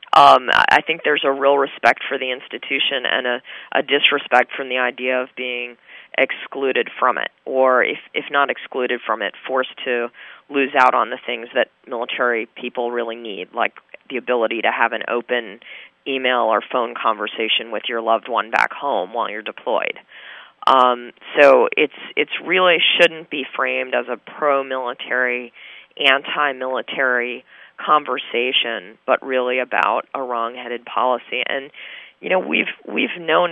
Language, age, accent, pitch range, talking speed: English, 40-59, American, 125-140 Hz, 160 wpm